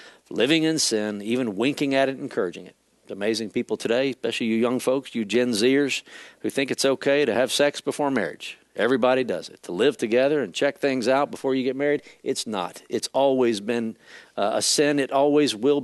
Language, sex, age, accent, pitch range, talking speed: English, male, 50-69, American, 125-180 Hz, 200 wpm